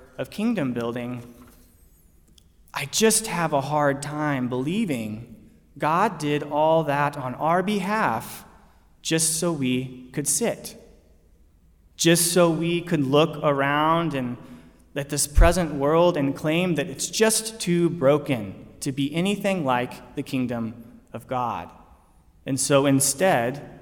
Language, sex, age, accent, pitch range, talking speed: English, male, 30-49, American, 110-155 Hz, 130 wpm